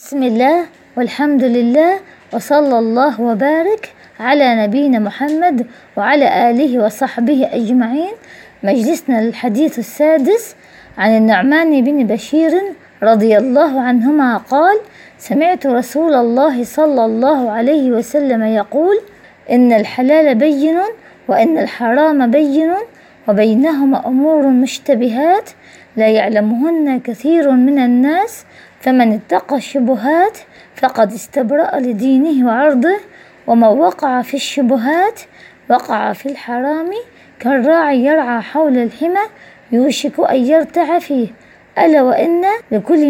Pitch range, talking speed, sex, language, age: 245-320 Hz, 100 wpm, female, Arabic, 20-39